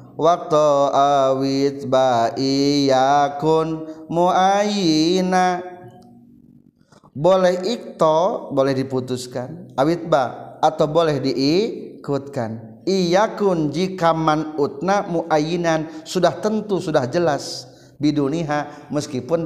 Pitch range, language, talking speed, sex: 135-170 Hz, Indonesian, 80 wpm, male